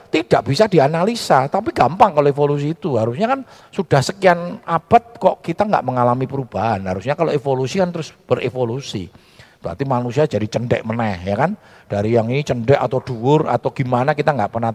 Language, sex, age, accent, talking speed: Indonesian, male, 50-69, native, 170 wpm